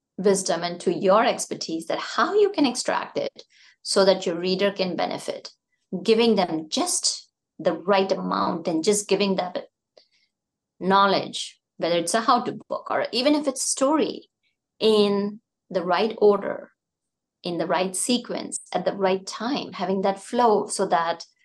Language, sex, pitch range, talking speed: English, female, 185-225 Hz, 155 wpm